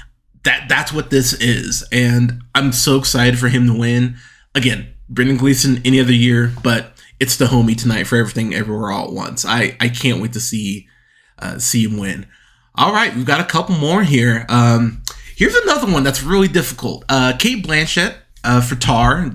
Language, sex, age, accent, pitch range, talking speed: English, male, 20-39, American, 120-140 Hz, 190 wpm